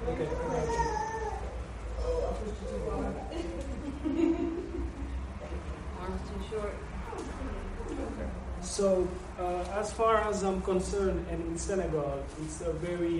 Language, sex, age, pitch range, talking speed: English, male, 20-39, 140-170 Hz, 75 wpm